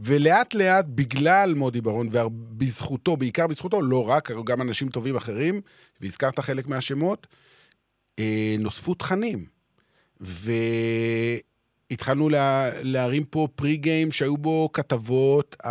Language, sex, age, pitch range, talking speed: Hebrew, male, 40-59, 120-185 Hz, 110 wpm